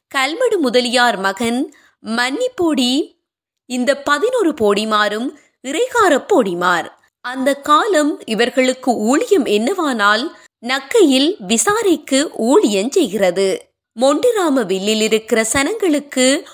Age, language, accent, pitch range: 20-39, Tamil, native, 230-330 Hz